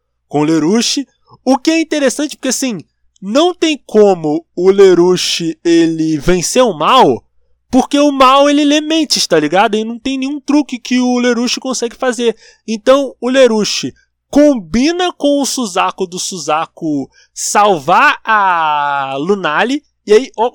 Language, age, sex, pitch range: Portuguese, 20-39, male, 170-285 Hz